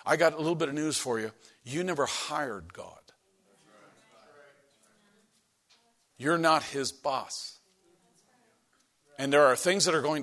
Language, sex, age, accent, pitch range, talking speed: English, male, 50-69, American, 115-150 Hz, 140 wpm